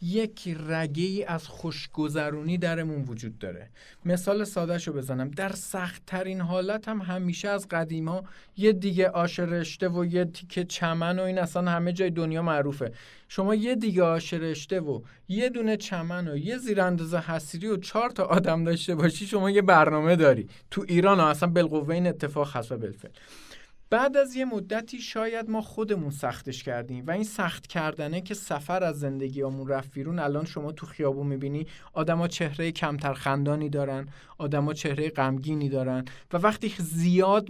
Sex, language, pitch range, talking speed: male, Persian, 150-195 Hz, 165 wpm